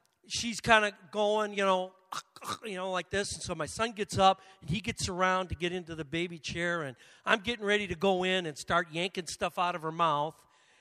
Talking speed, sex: 230 wpm, male